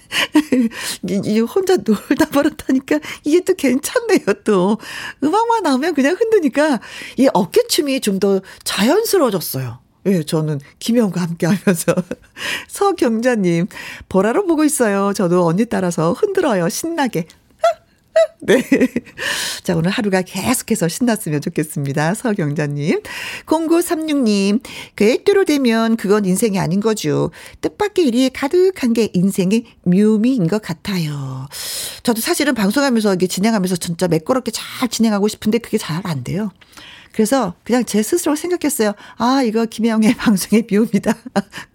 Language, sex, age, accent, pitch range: Korean, female, 50-69, native, 185-265 Hz